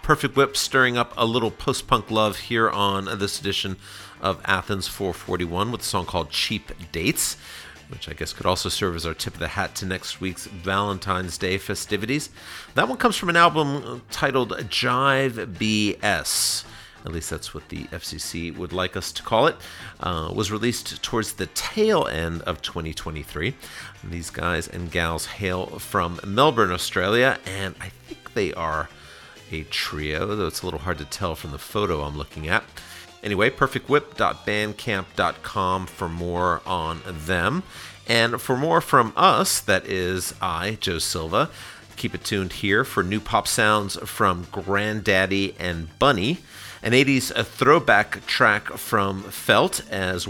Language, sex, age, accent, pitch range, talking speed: English, male, 40-59, American, 85-105 Hz, 155 wpm